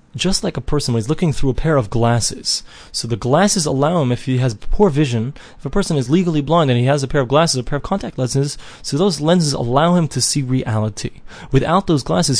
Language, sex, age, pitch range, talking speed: English, male, 20-39, 125-160 Hz, 245 wpm